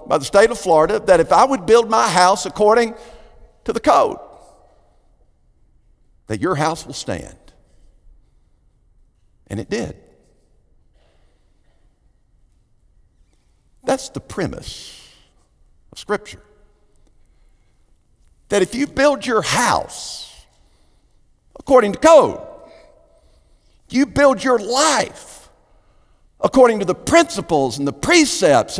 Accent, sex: American, male